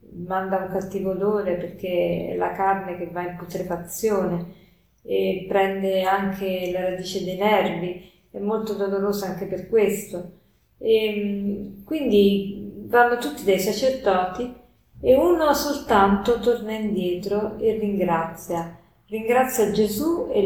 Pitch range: 185-220 Hz